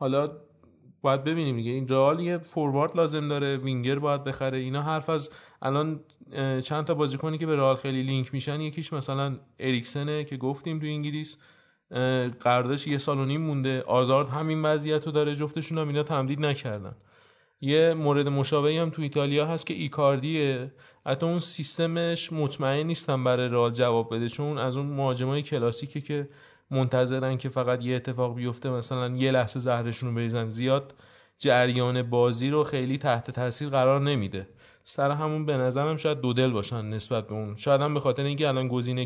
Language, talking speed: Persian, 165 wpm